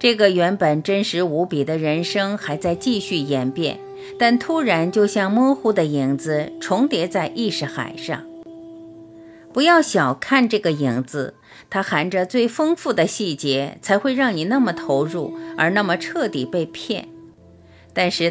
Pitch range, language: 150-235 Hz, Chinese